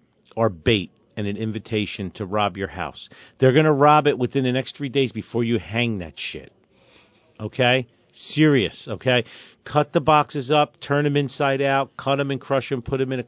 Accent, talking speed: American, 200 wpm